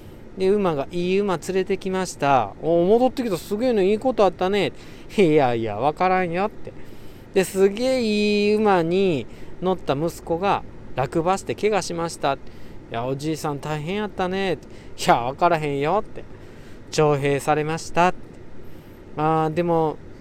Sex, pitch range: male, 130-195 Hz